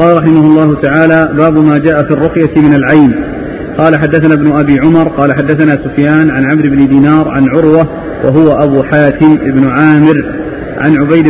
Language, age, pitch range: Arabic, 40-59, 145-165 Hz